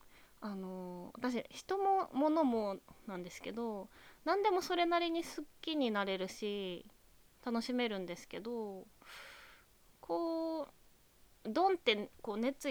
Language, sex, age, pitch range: Japanese, female, 20-39, 195-275 Hz